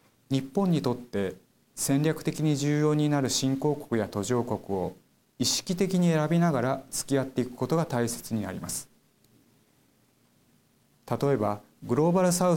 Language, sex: Japanese, male